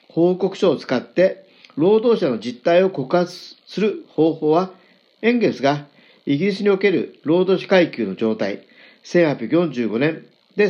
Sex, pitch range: male, 145-200 Hz